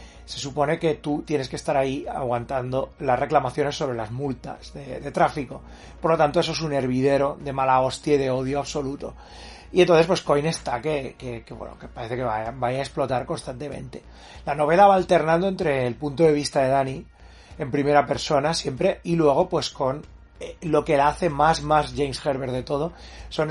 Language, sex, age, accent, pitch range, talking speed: Spanish, male, 30-49, Spanish, 130-165 Hz, 200 wpm